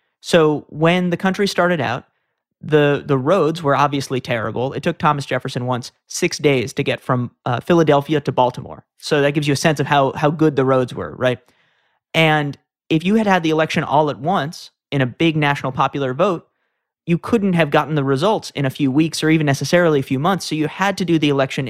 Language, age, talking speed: English, 30-49, 220 wpm